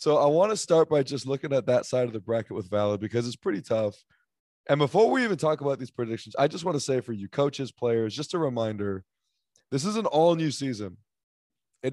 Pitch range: 110-145 Hz